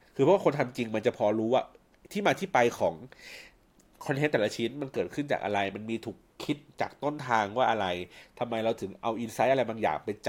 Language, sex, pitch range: Thai, male, 100-135 Hz